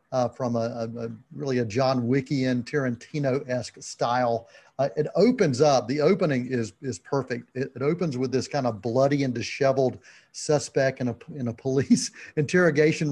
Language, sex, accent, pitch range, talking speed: English, male, American, 125-160 Hz, 175 wpm